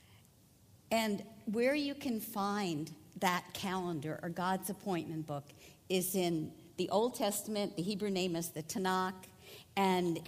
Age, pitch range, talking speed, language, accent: 50-69, 150-205 Hz, 135 wpm, English, American